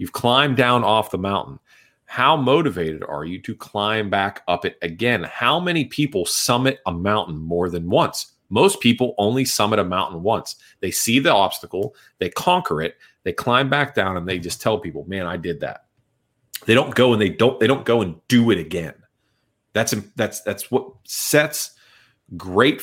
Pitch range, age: 90-125 Hz, 30-49